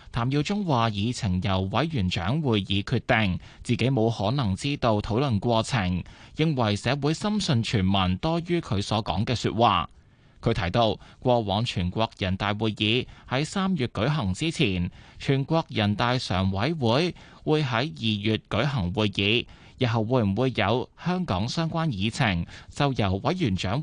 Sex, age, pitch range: male, 20-39, 100-135 Hz